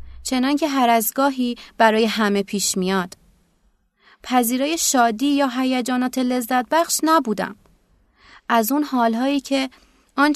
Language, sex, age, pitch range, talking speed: Persian, female, 30-49, 215-275 Hz, 120 wpm